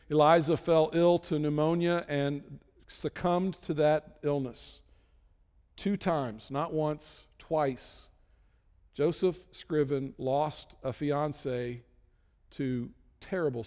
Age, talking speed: 50-69, 95 wpm